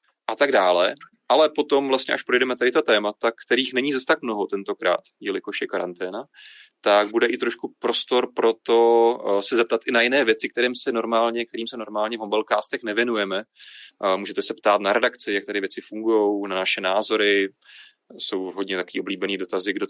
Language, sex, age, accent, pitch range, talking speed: Czech, male, 30-49, native, 110-140 Hz, 185 wpm